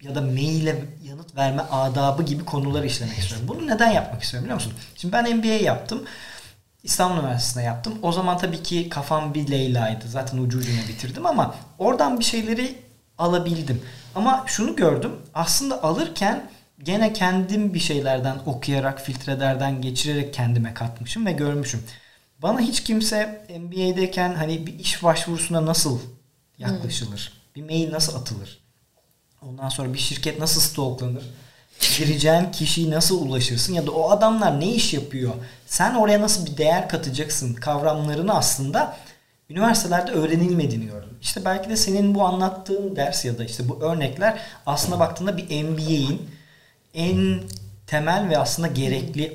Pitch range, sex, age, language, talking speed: 125-180 Hz, male, 40-59, Turkish, 145 wpm